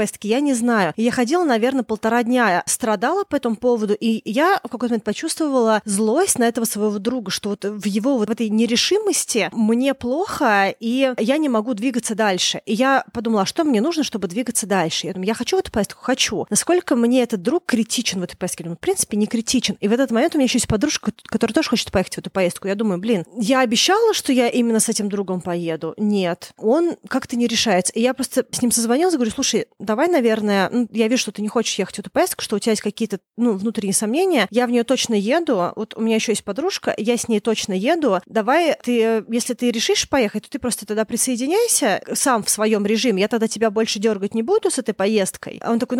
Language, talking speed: Russian, 230 wpm